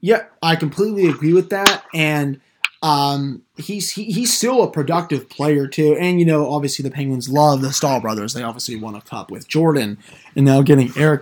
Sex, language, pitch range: male, English, 135-160 Hz